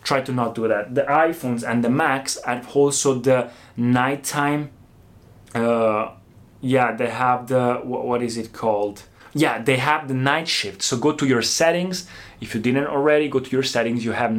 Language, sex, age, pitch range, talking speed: Italian, male, 20-39, 120-140 Hz, 190 wpm